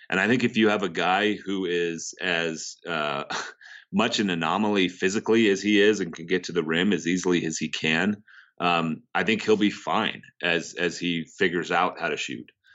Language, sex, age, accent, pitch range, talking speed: English, male, 30-49, American, 85-105 Hz, 205 wpm